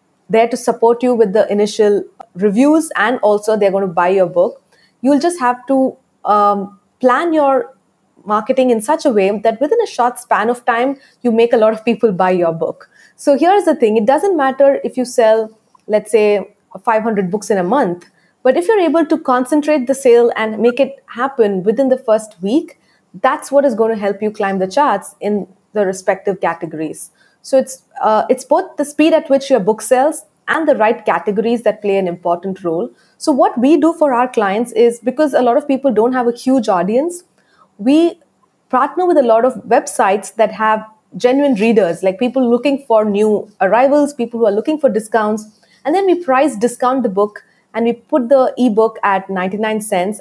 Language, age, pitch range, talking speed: English, 20-39, 205-270 Hz, 200 wpm